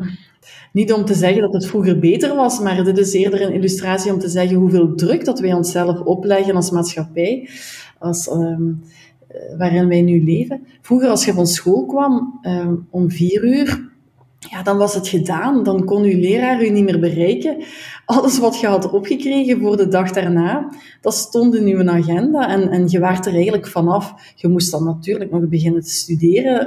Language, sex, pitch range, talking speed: Dutch, female, 175-215 Hz, 190 wpm